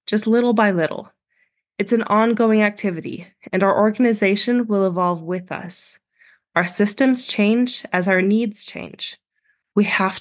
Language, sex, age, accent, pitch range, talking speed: English, female, 20-39, American, 175-215 Hz, 140 wpm